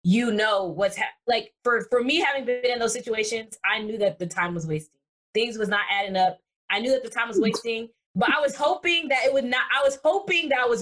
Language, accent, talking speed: English, American, 255 wpm